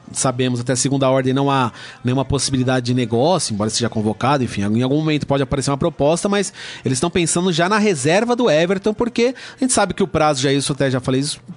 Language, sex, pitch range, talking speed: Portuguese, male, 140-180 Hz, 235 wpm